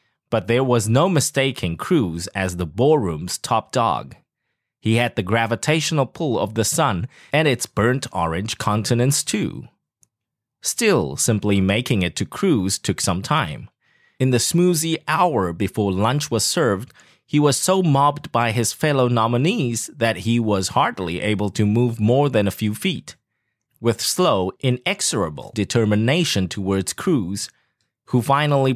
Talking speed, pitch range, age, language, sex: 145 wpm, 105-140 Hz, 30-49, English, male